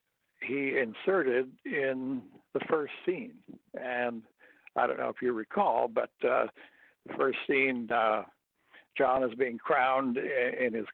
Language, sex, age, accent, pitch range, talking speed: English, male, 60-79, American, 120-140 Hz, 135 wpm